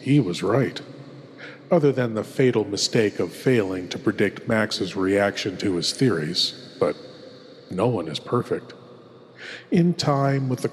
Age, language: 40-59, English